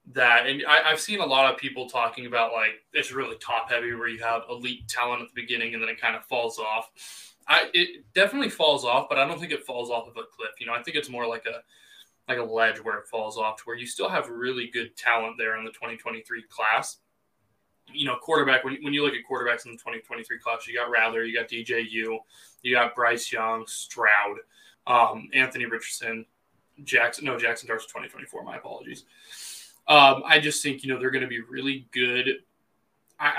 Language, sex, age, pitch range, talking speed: English, male, 20-39, 115-135 Hz, 215 wpm